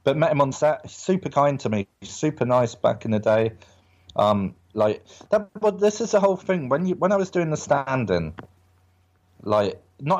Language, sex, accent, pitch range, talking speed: English, male, British, 95-140 Hz, 205 wpm